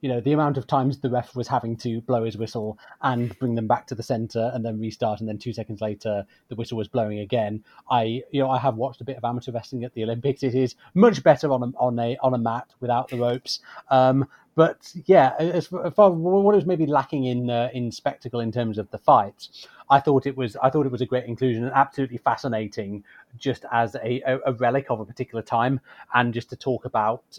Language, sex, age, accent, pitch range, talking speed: English, male, 30-49, British, 115-140 Hz, 240 wpm